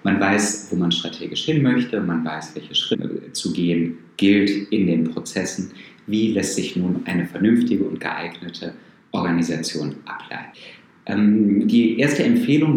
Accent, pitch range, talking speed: German, 95-140 Hz, 145 wpm